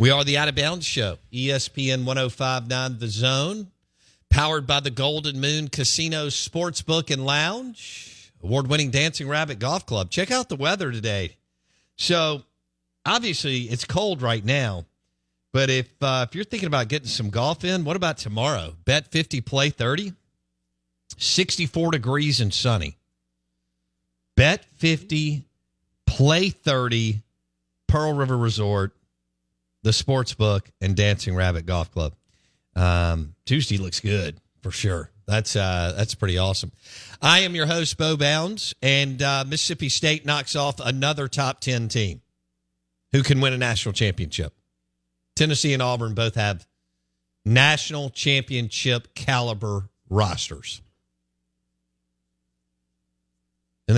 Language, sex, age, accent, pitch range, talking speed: English, male, 50-69, American, 85-145 Hz, 130 wpm